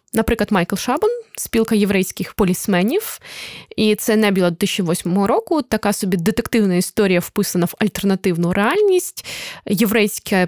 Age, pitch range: 20-39, 190-230 Hz